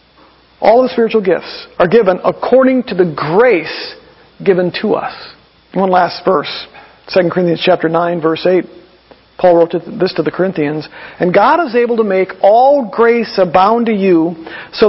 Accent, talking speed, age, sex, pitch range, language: American, 165 wpm, 50-69, male, 190-270 Hz, English